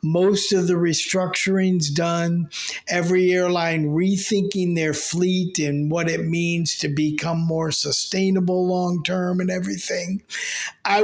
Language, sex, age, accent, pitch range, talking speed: English, male, 50-69, American, 150-180 Hz, 125 wpm